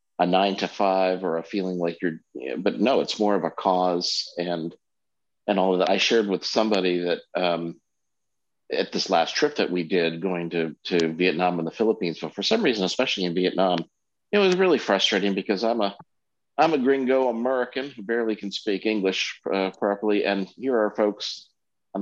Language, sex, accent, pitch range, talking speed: English, male, American, 95-115 Hz, 195 wpm